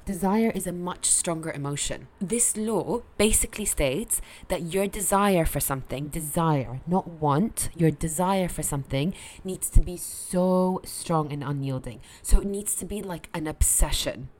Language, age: English, 20-39